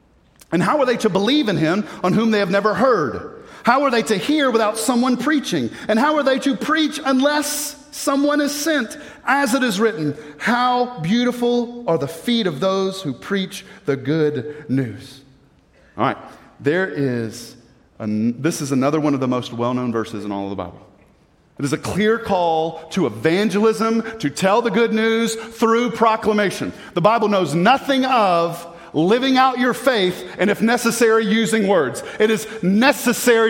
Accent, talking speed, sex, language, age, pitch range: American, 175 wpm, male, English, 40-59, 165-245 Hz